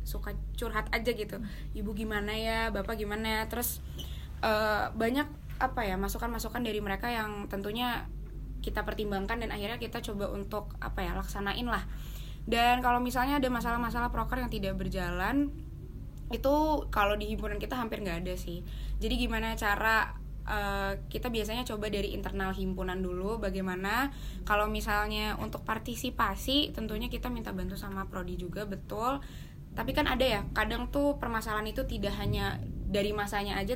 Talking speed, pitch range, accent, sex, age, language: 155 wpm, 195-225 Hz, native, female, 20-39, Indonesian